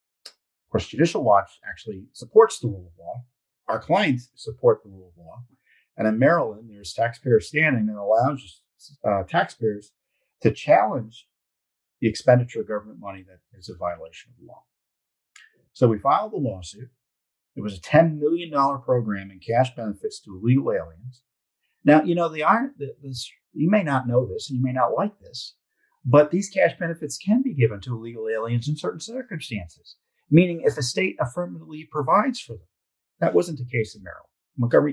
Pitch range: 105-155 Hz